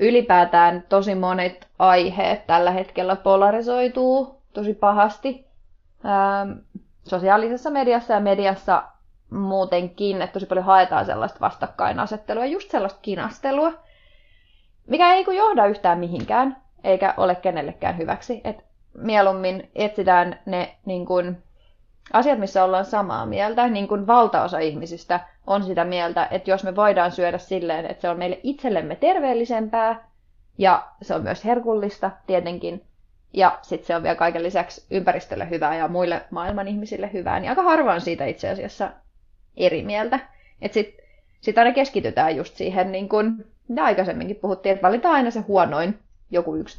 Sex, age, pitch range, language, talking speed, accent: female, 30-49, 180-225 Hz, Finnish, 140 wpm, native